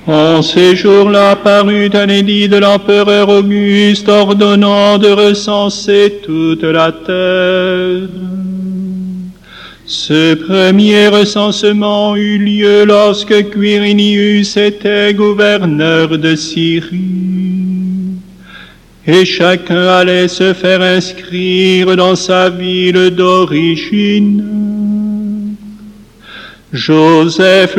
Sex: male